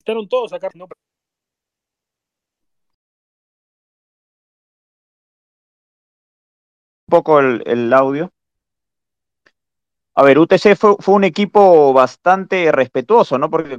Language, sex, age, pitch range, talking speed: Spanish, male, 40-59, 135-200 Hz, 85 wpm